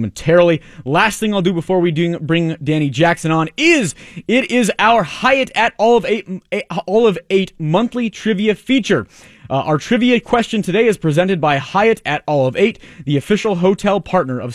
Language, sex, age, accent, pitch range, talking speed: English, male, 30-49, American, 140-190 Hz, 185 wpm